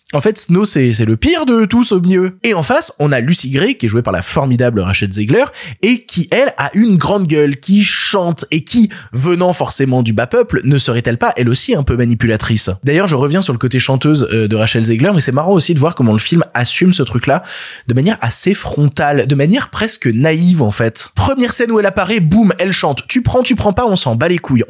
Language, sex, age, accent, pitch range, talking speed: French, male, 20-39, French, 135-195 Hz, 245 wpm